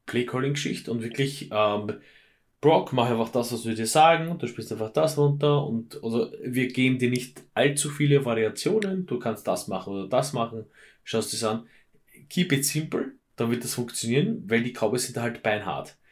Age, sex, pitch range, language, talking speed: 20-39, male, 110-135 Hz, German, 180 wpm